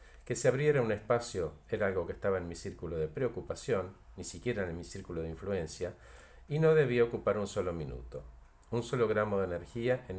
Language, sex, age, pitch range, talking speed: Spanish, male, 50-69, 80-115 Hz, 200 wpm